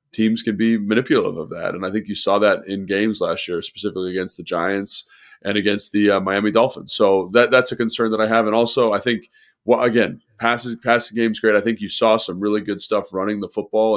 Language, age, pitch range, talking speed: English, 30-49, 100-115 Hz, 230 wpm